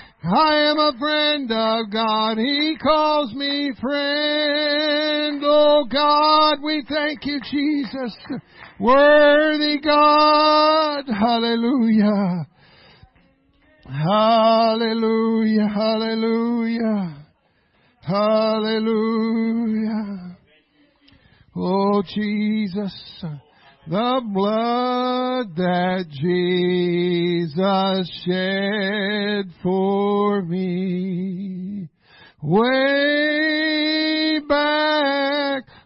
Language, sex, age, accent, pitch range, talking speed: English, male, 50-69, American, 210-290 Hz, 55 wpm